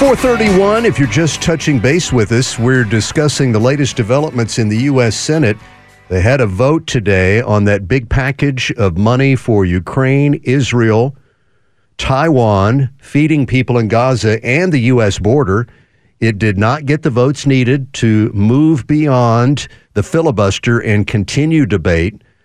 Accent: American